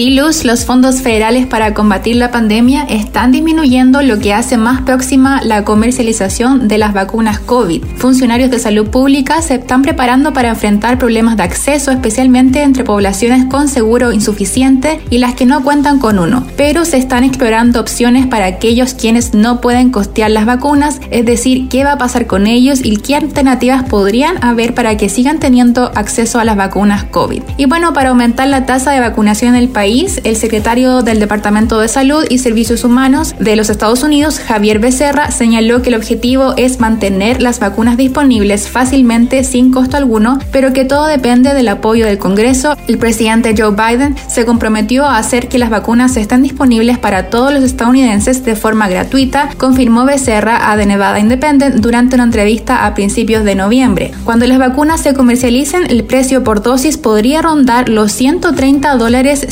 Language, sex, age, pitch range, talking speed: Spanish, female, 10-29, 225-265 Hz, 175 wpm